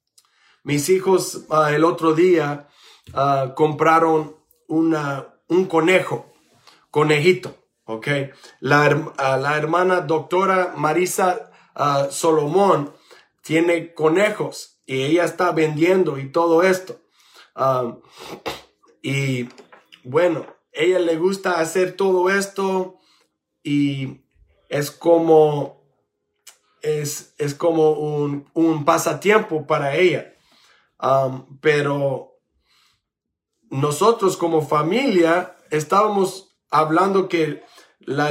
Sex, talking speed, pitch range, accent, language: male, 80 wpm, 150-185 Hz, Mexican, English